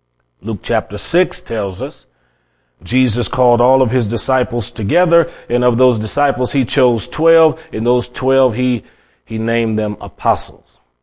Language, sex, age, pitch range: English, male, 30-49, 105-135 Hz